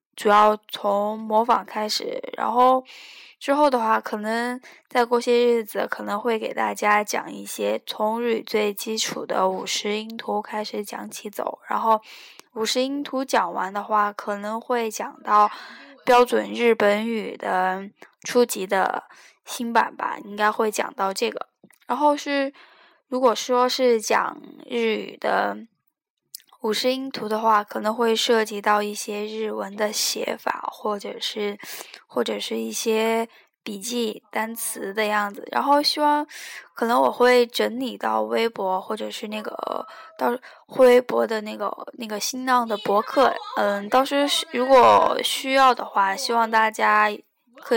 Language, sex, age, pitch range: Chinese, female, 10-29, 210-250 Hz